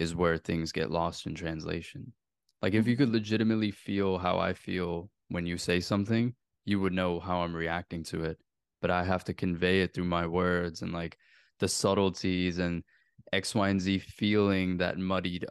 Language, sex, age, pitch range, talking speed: English, male, 20-39, 85-100 Hz, 190 wpm